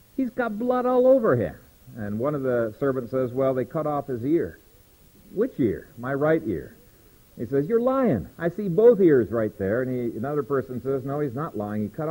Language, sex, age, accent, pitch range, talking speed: English, male, 50-69, American, 120-165 Hz, 220 wpm